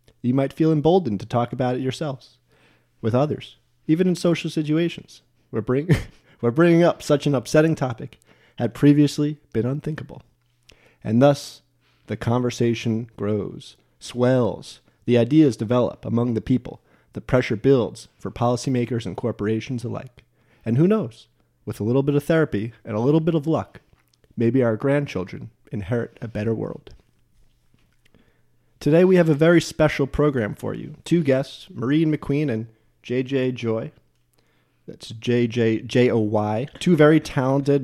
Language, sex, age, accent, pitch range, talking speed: English, male, 30-49, American, 115-145 Hz, 145 wpm